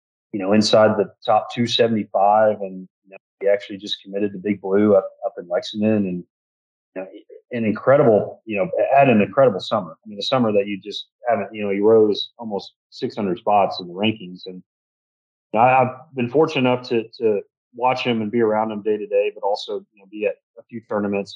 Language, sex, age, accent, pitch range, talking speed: English, male, 30-49, American, 100-135 Hz, 220 wpm